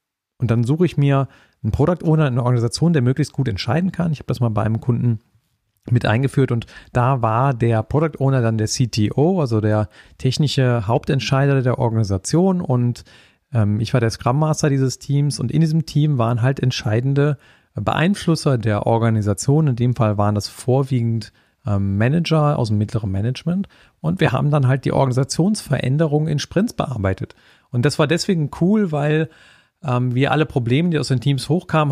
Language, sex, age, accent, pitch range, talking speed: German, male, 40-59, German, 115-150 Hz, 180 wpm